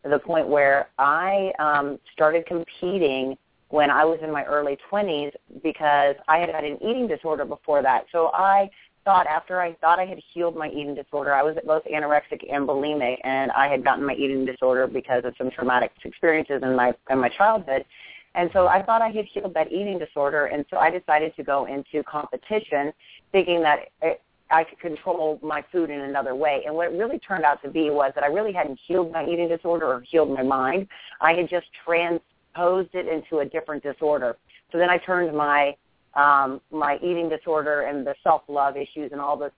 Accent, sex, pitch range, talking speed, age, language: American, female, 140-175 Hz, 205 wpm, 40-59, English